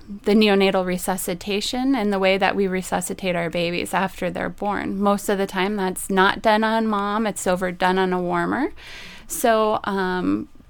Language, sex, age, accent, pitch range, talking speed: English, female, 20-39, American, 185-210 Hz, 170 wpm